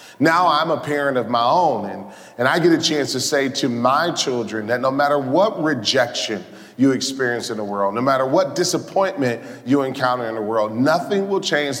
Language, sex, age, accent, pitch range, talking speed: English, male, 40-59, American, 120-155 Hz, 205 wpm